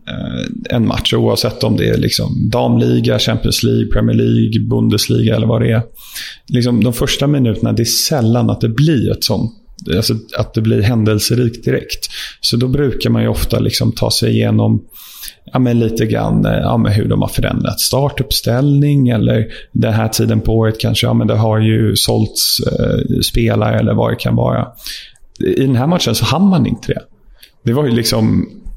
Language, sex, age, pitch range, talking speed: English, male, 30-49, 110-125 Hz, 185 wpm